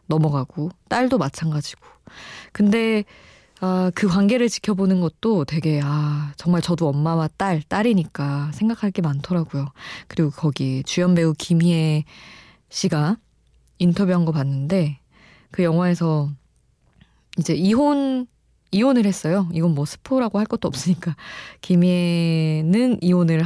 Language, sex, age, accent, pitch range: Korean, female, 20-39, native, 155-190 Hz